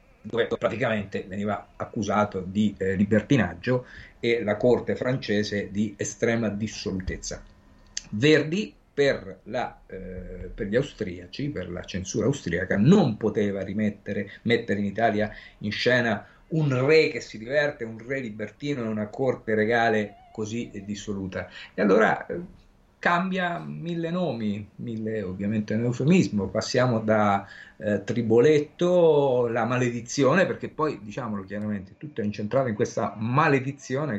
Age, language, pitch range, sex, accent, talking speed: 50-69, Italian, 105-140 Hz, male, native, 125 wpm